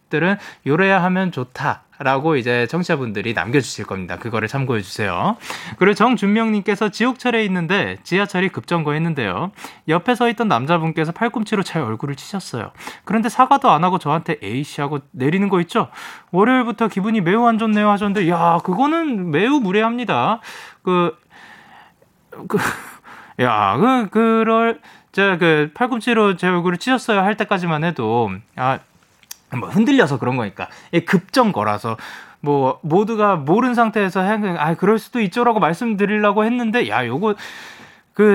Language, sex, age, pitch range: Korean, male, 20-39, 130-210 Hz